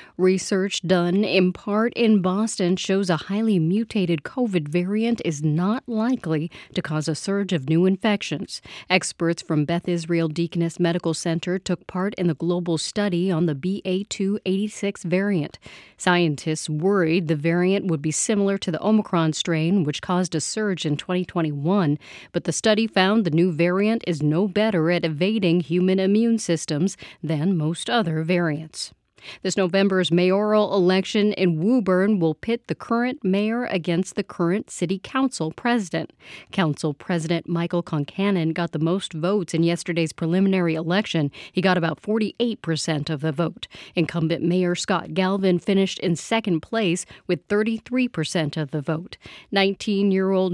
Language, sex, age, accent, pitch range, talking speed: English, female, 40-59, American, 165-200 Hz, 150 wpm